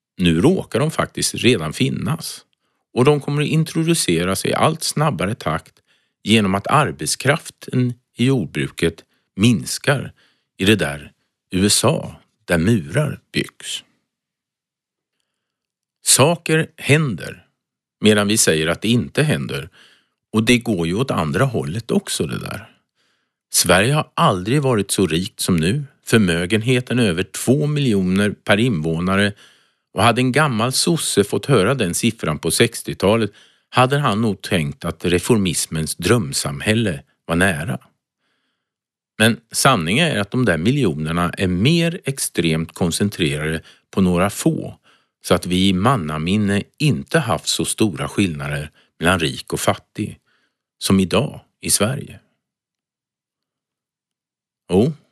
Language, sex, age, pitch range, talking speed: Swedish, male, 50-69, 90-130 Hz, 125 wpm